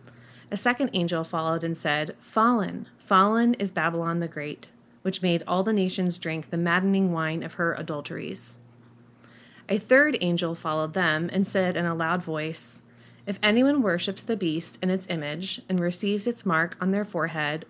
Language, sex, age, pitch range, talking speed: English, female, 30-49, 160-195 Hz, 170 wpm